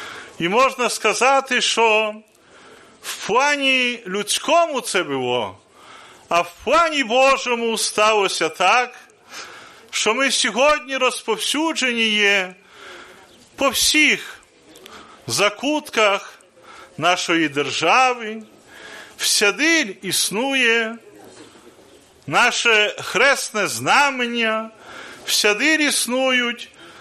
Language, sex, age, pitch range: Polish, male, 40-59, 195-265 Hz